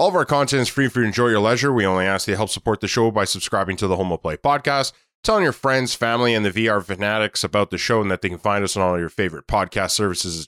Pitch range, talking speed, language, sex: 100-130 Hz, 310 wpm, English, male